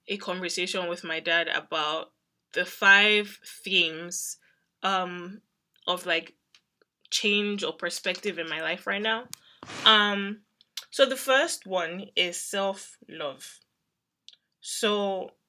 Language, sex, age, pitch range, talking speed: English, female, 10-29, 175-200 Hz, 105 wpm